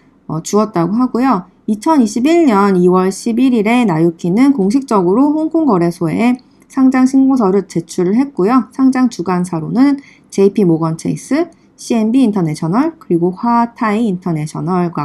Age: 40-59